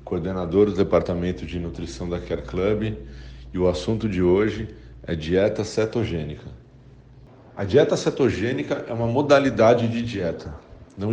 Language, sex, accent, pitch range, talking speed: Portuguese, male, Brazilian, 105-135 Hz, 135 wpm